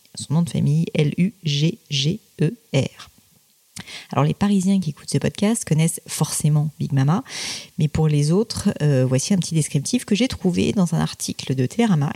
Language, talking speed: French, 165 wpm